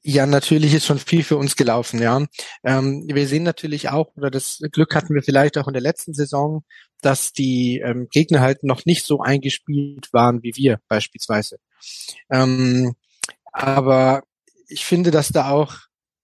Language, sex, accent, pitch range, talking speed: German, male, German, 135-160 Hz, 155 wpm